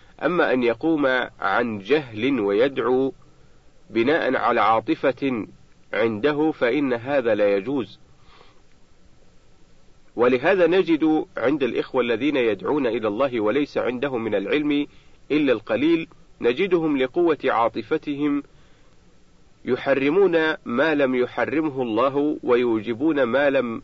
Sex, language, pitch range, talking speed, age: male, Arabic, 125-160 Hz, 100 wpm, 50-69